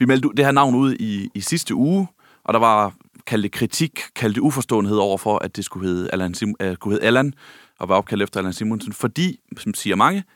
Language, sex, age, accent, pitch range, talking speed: Danish, male, 30-49, native, 95-120 Hz, 205 wpm